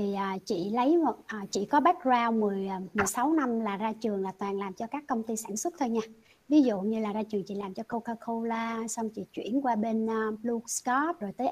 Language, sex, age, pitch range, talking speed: Vietnamese, male, 60-79, 210-280 Hz, 215 wpm